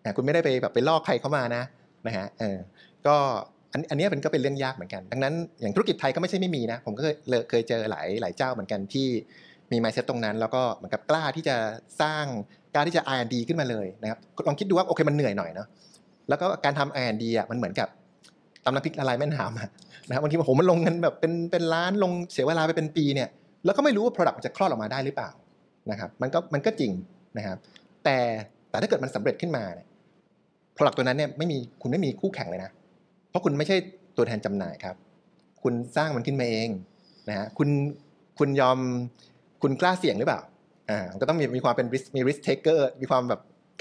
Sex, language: male, Thai